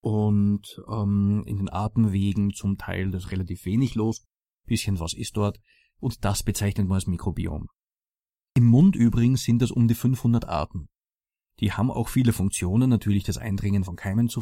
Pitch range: 100-120 Hz